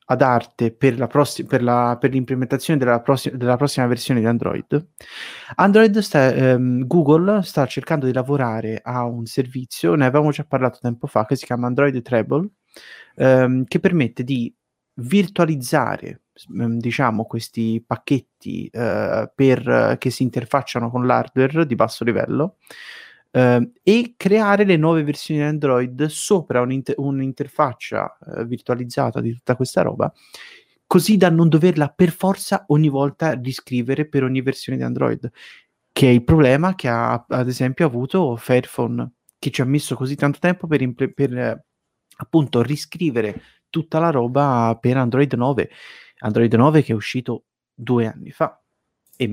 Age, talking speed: 30-49, 145 wpm